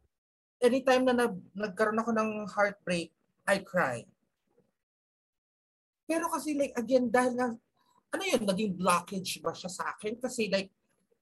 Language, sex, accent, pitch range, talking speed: English, male, Filipino, 190-250 Hz, 130 wpm